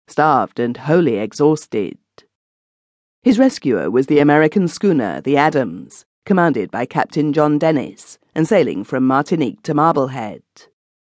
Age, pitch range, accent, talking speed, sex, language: 40-59, 135-175 Hz, British, 125 wpm, female, English